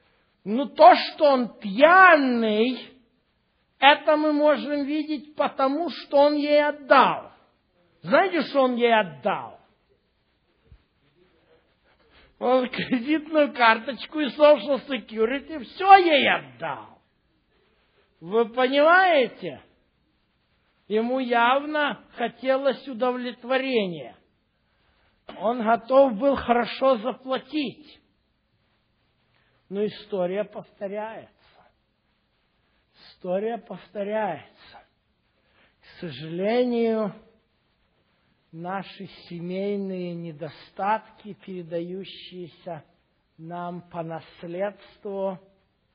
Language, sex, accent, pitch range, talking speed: Russian, male, native, 185-265 Hz, 70 wpm